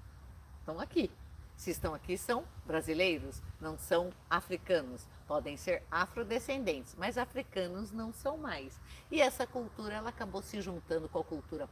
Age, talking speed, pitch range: 50-69, 145 wpm, 180-250 Hz